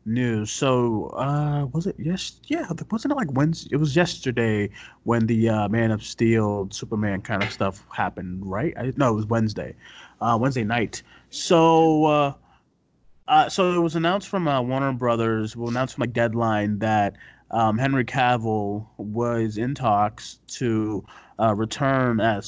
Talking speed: 170 wpm